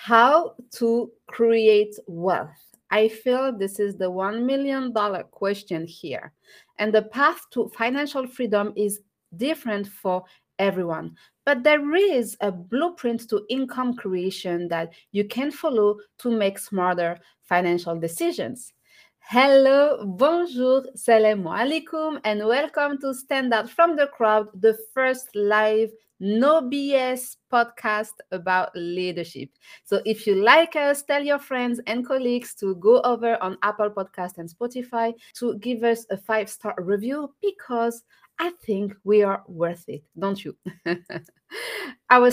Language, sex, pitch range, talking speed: English, female, 200-265 Hz, 135 wpm